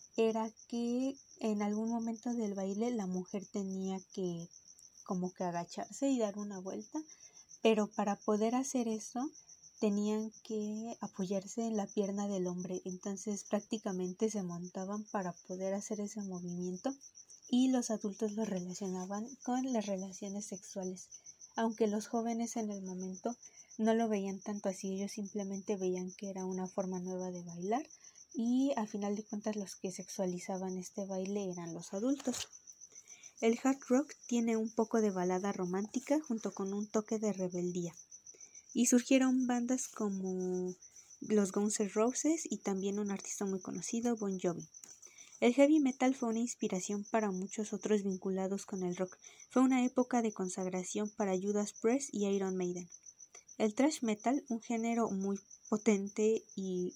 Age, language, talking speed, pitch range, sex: 20-39, Spanish, 155 wpm, 190-230 Hz, female